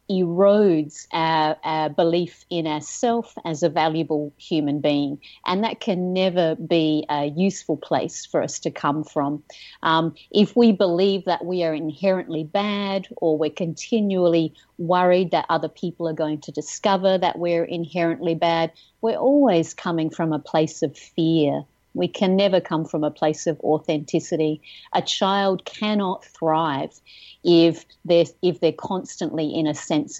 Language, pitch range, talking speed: English, 155-195 Hz, 150 wpm